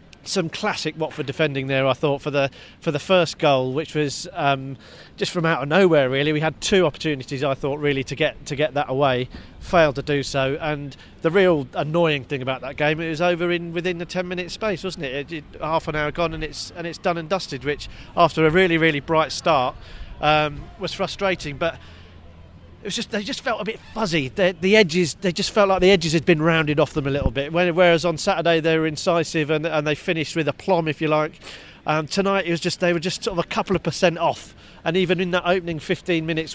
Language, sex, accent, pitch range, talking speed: English, male, British, 155-185 Hz, 240 wpm